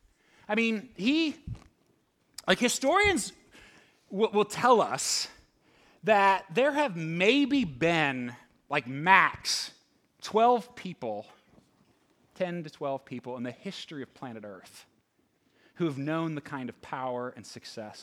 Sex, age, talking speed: male, 30-49, 120 wpm